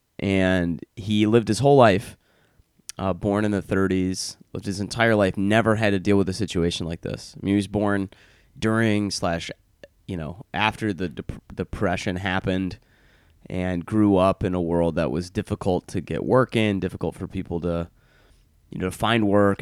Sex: male